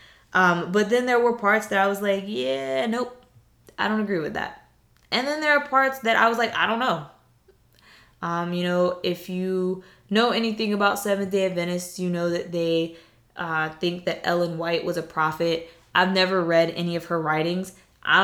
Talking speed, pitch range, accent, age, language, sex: 195 wpm, 165-205 Hz, American, 20-39, English, female